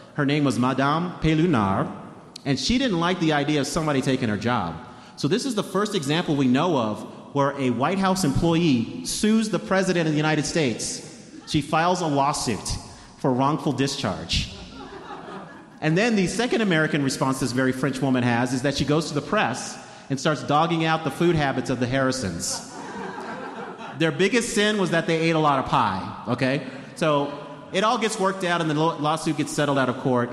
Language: English